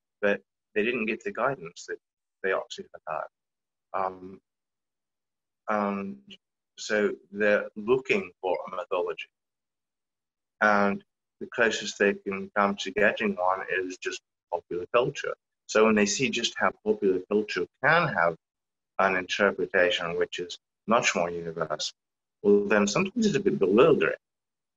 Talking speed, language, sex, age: 130 wpm, English, male, 30-49